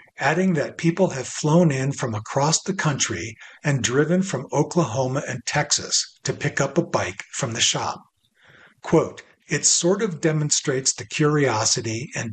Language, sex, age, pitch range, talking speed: English, male, 50-69, 125-165 Hz, 155 wpm